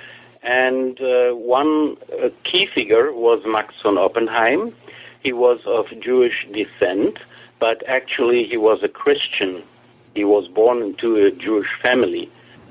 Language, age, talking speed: English, 60-79, 130 wpm